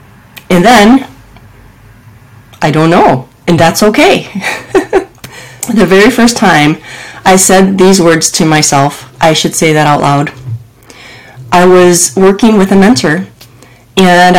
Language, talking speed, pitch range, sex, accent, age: English, 130 wpm, 150-200 Hz, female, American, 30-49